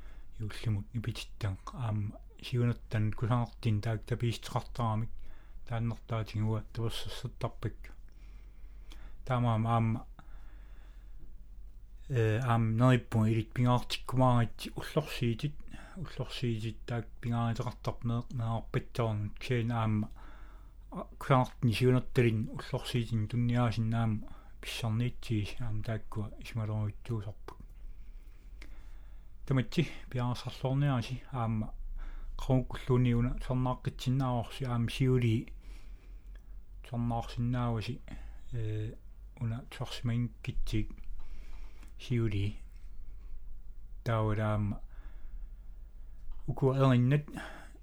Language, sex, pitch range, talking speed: Danish, male, 100-125 Hz, 45 wpm